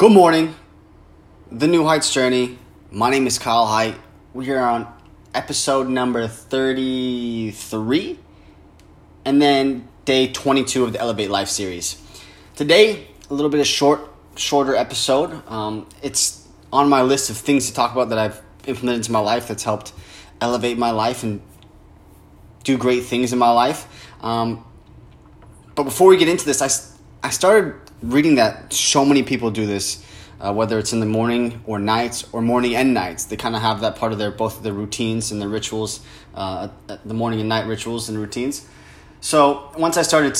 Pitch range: 100-130 Hz